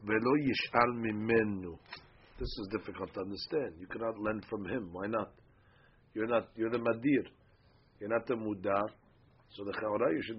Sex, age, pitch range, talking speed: male, 50-69, 100-120 Hz, 150 wpm